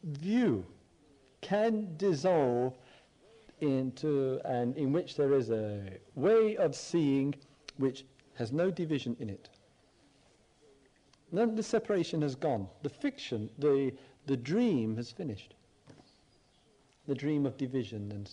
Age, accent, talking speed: 50-69, British, 120 wpm